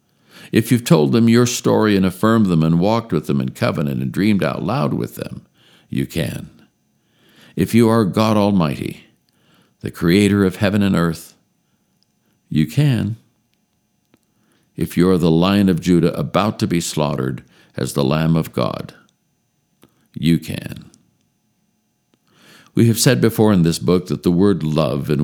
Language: English